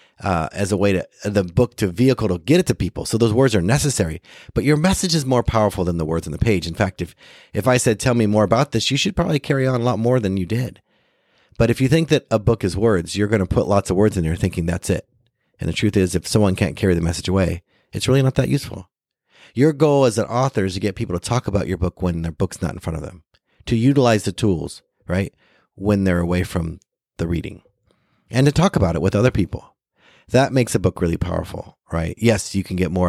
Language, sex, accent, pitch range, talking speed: English, male, American, 90-125 Hz, 260 wpm